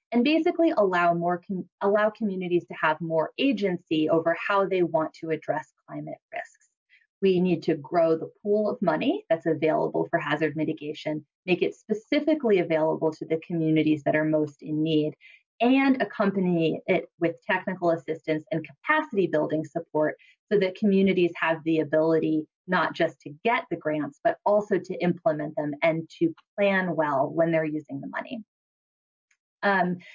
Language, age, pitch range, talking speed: English, 20-39, 160-210 Hz, 160 wpm